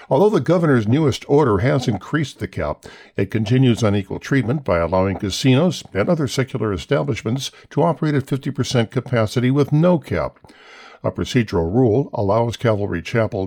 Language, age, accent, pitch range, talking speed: English, 50-69, American, 105-140 Hz, 150 wpm